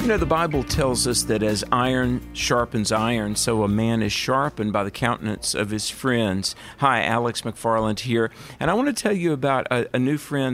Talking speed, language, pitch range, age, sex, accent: 210 wpm, English, 110-140 Hz, 50-69, male, American